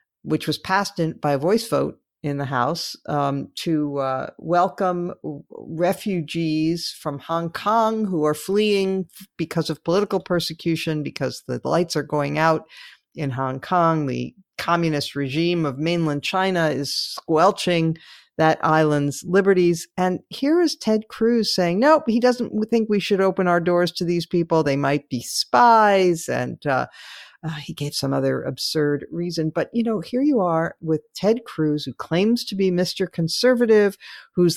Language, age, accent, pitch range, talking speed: English, 50-69, American, 145-185 Hz, 160 wpm